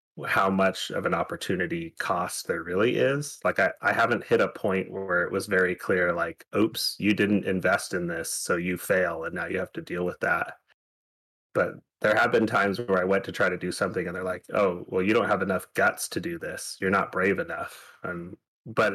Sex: male